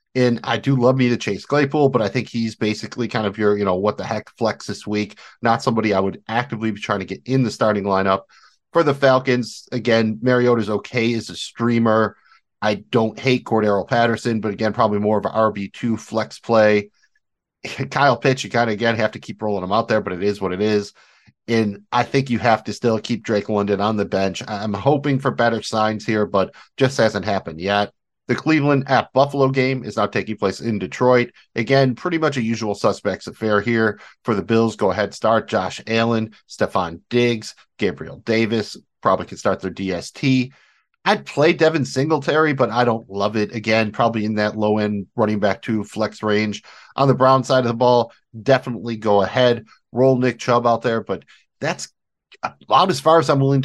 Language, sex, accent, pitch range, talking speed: English, male, American, 105-125 Hz, 205 wpm